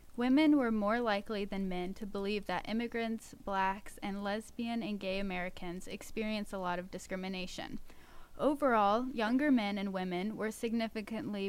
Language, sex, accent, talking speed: English, female, American, 145 wpm